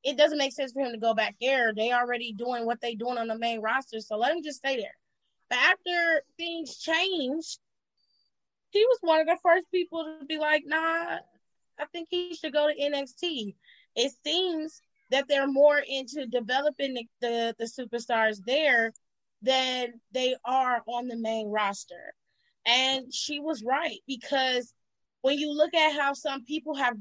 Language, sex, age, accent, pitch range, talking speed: English, female, 20-39, American, 240-310 Hz, 175 wpm